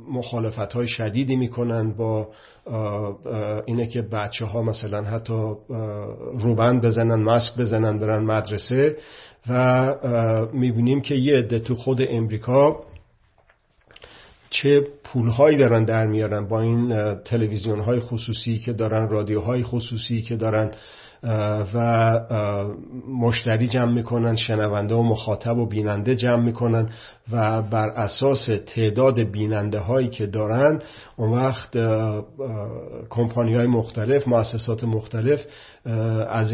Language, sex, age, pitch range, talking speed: Persian, male, 50-69, 110-125 Hz, 110 wpm